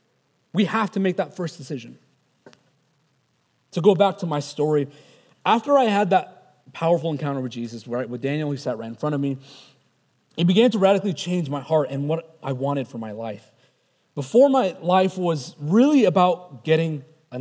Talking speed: 185 wpm